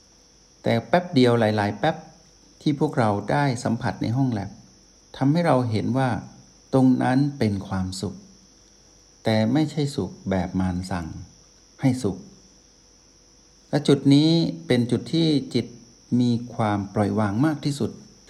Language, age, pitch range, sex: Thai, 60-79, 95-130 Hz, male